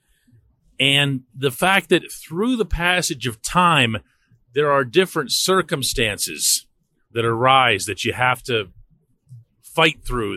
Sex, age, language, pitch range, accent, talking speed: male, 40-59, English, 120-150 Hz, American, 120 wpm